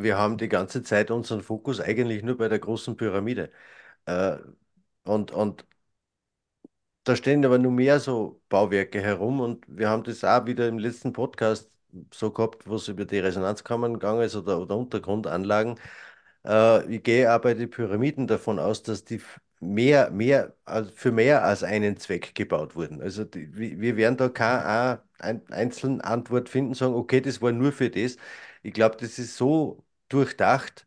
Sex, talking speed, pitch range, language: male, 165 wpm, 105-125 Hz, German